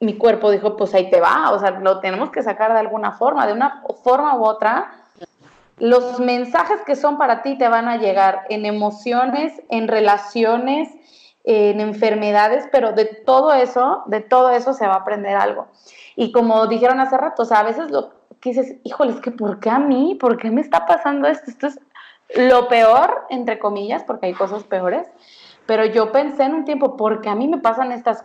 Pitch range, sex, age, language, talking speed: 200-250 Hz, female, 30-49, Spanish, 205 wpm